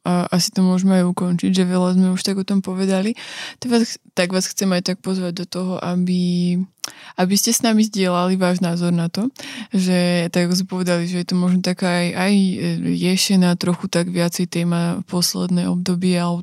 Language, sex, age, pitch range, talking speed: Slovak, female, 20-39, 175-190 Hz, 190 wpm